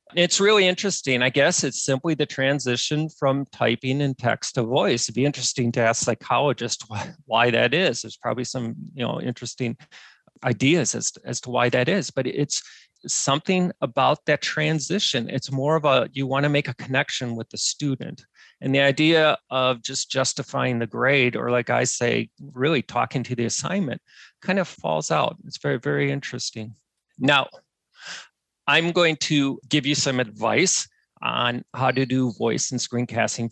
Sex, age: male, 40-59